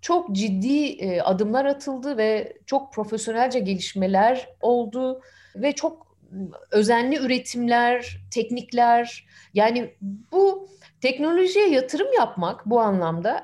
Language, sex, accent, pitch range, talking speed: Turkish, female, native, 195-280 Hz, 95 wpm